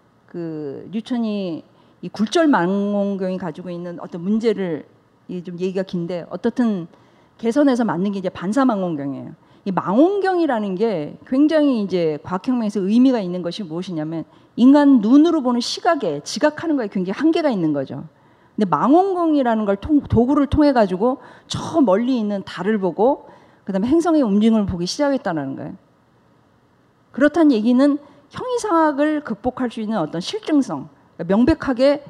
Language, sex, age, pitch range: Korean, female, 40-59, 185-285 Hz